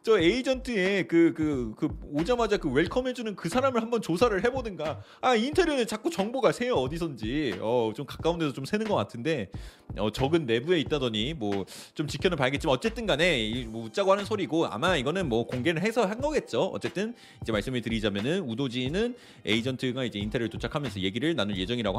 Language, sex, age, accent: Korean, male, 30-49, native